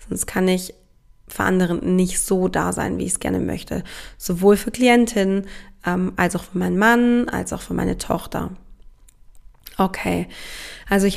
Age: 20-39